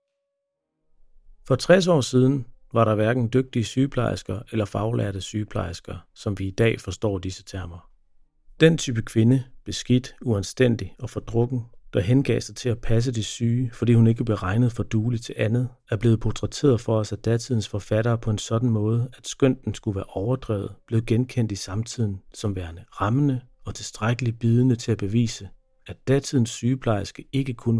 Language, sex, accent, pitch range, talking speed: Danish, male, native, 105-125 Hz, 170 wpm